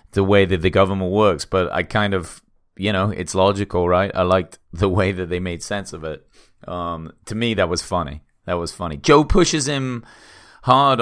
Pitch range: 90-110 Hz